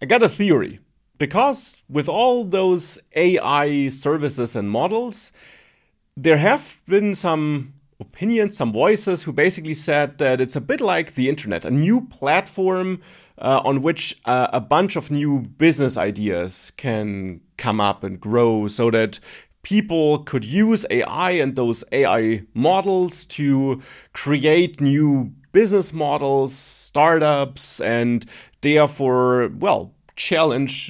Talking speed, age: 130 wpm, 30-49